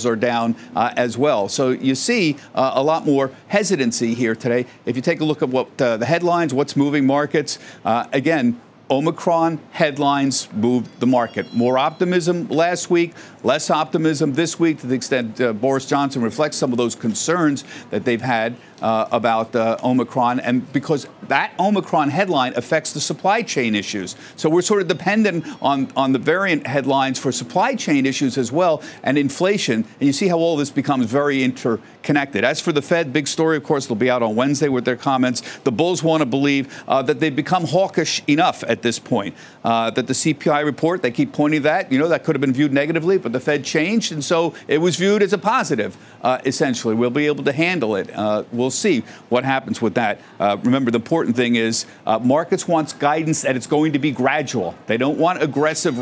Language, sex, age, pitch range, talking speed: English, male, 50-69, 125-165 Hz, 205 wpm